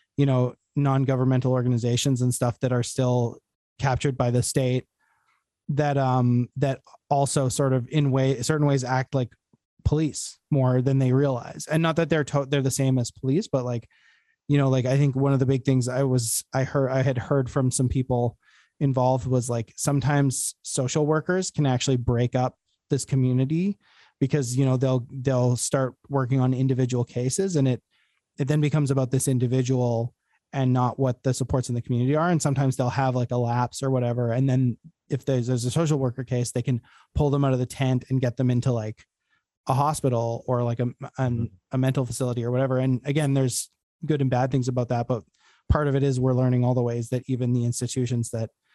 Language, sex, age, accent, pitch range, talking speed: English, male, 20-39, American, 125-140 Hz, 205 wpm